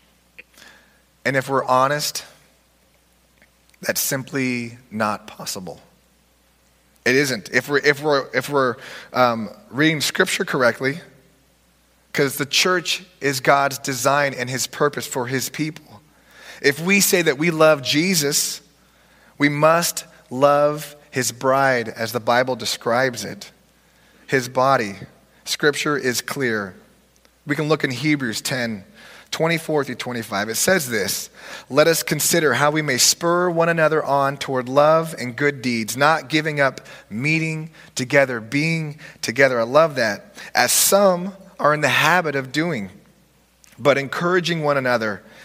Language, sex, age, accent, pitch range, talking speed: English, male, 30-49, American, 125-155 Hz, 135 wpm